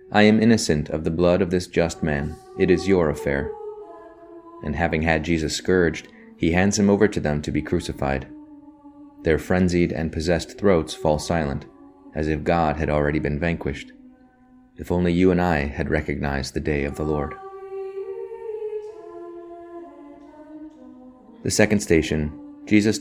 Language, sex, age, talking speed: English, male, 30-49, 150 wpm